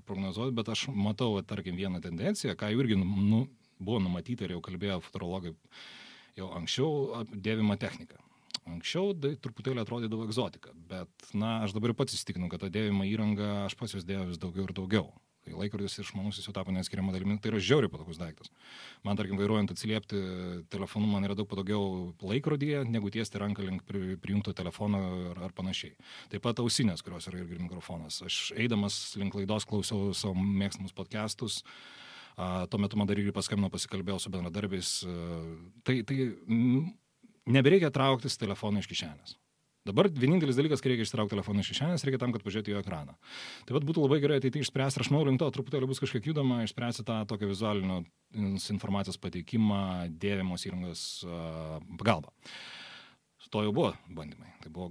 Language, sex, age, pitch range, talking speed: English, male, 30-49, 95-120 Hz, 165 wpm